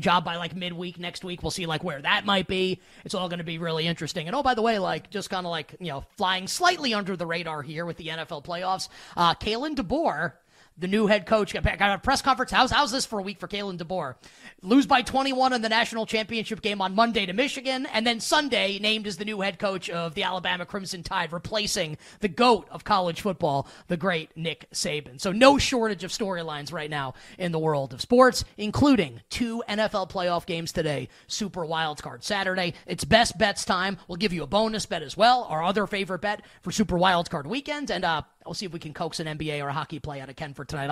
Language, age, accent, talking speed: English, 30-49, American, 230 wpm